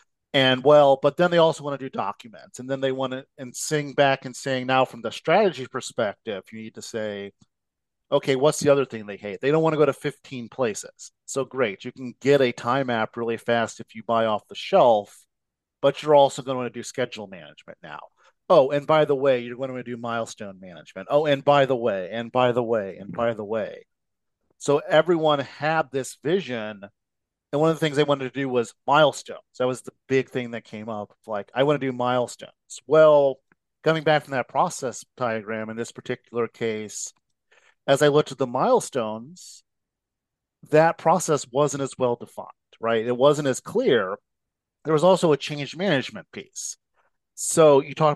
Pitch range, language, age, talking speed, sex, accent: 115-150 Hz, English, 40-59, 205 wpm, male, American